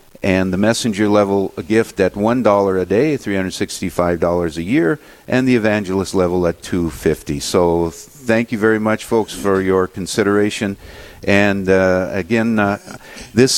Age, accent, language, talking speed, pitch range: 50-69, American, English, 165 wpm, 95-115 Hz